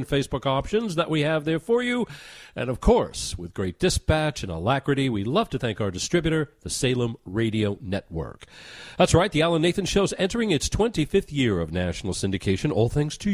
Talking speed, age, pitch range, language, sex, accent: 190 wpm, 40-59, 115-190 Hz, English, male, American